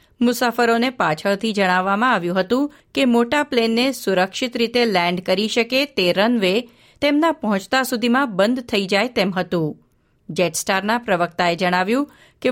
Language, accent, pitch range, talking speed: Gujarati, native, 185-250 Hz, 130 wpm